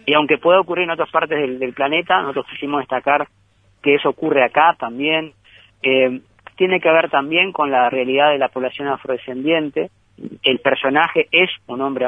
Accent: Argentinian